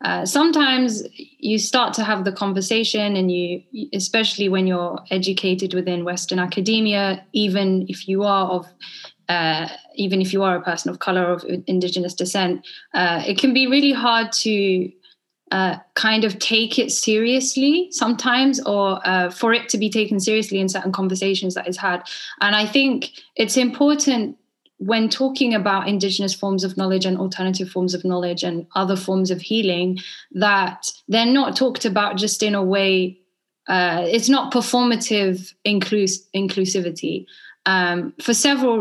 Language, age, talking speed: English, 10-29, 155 wpm